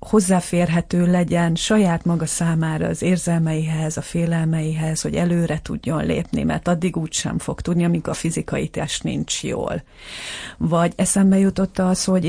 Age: 40-59